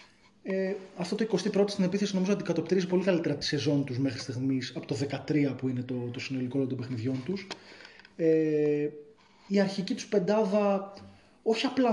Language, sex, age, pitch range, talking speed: Greek, male, 20-39, 165-220 Hz, 175 wpm